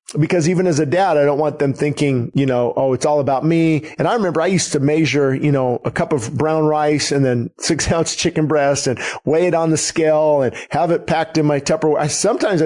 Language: English